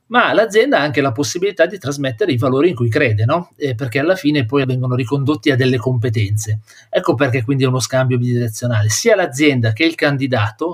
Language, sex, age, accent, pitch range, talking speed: Italian, male, 40-59, native, 125-165 Hz, 200 wpm